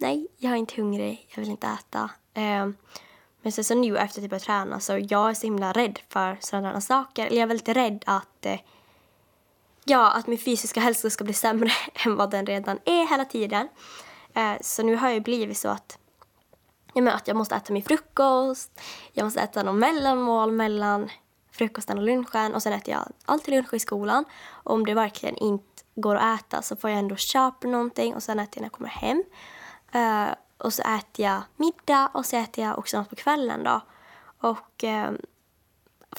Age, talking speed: 10-29, 190 wpm